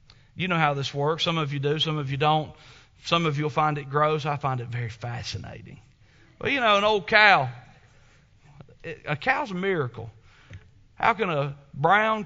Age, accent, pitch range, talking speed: 40-59, American, 125-175 Hz, 190 wpm